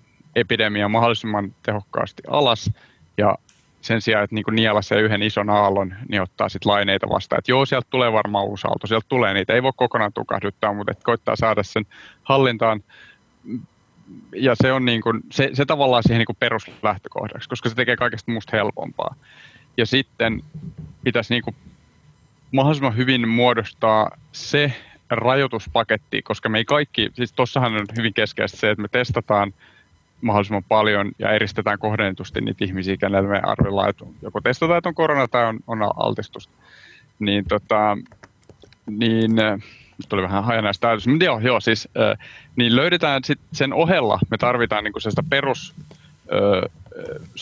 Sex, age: male, 30-49